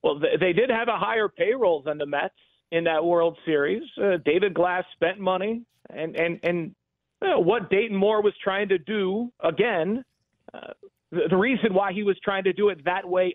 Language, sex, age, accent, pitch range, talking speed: English, male, 40-59, American, 165-200 Hz, 200 wpm